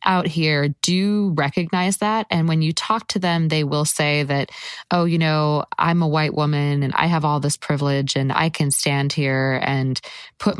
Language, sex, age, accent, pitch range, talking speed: English, female, 20-39, American, 145-170 Hz, 200 wpm